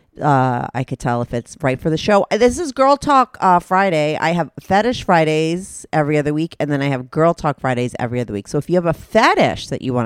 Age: 30-49